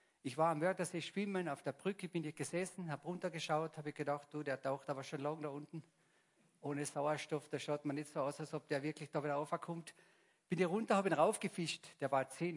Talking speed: 230 wpm